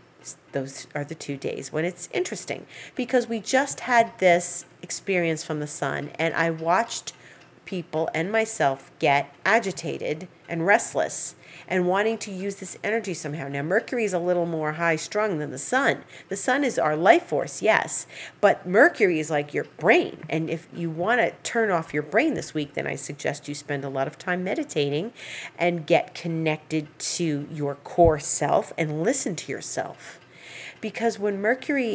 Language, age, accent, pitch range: English, 40-59, American, 150-195 Hz